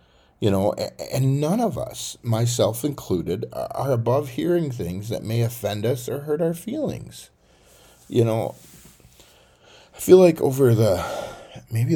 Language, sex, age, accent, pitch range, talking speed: English, male, 40-59, American, 85-125 Hz, 140 wpm